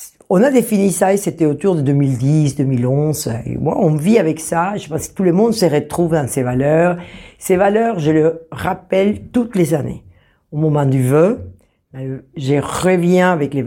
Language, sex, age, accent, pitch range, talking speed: French, female, 60-79, French, 140-185 Hz, 175 wpm